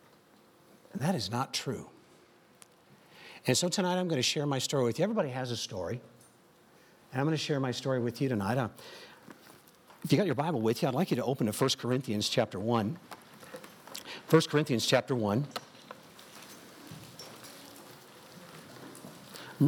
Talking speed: 160 wpm